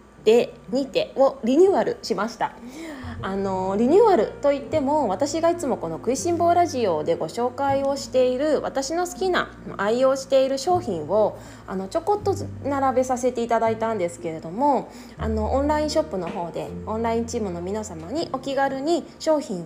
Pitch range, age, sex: 200-290 Hz, 20-39, female